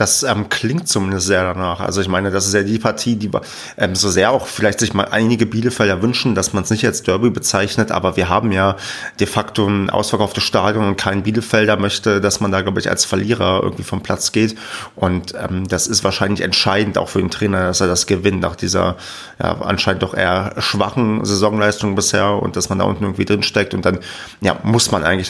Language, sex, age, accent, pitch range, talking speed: German, male, 30-49, German, 95-110 Hz, 220 wpm